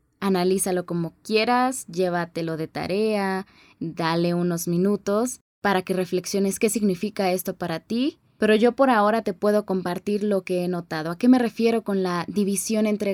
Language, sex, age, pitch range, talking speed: Spanish, female, 20-39, 185-225 Hz, 165 wpm